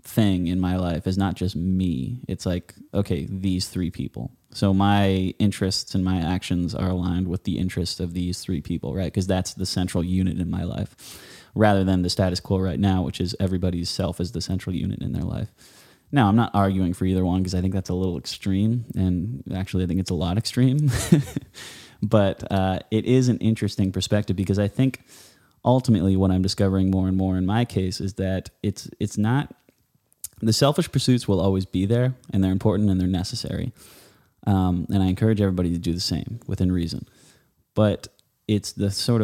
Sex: male